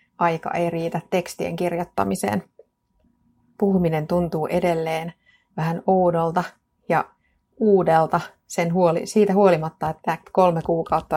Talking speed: 100 wpm